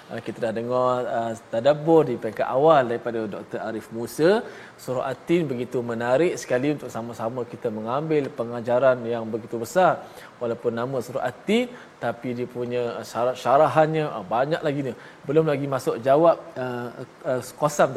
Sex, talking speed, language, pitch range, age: male, 145 wpm, Malayalam, 120-150 Hz, 20-39